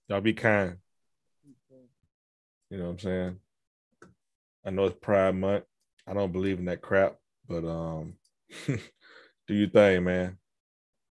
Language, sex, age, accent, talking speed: English, male, 20-39, American, 135 wpm